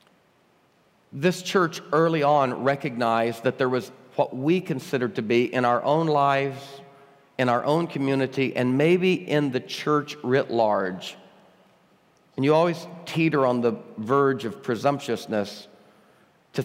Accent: American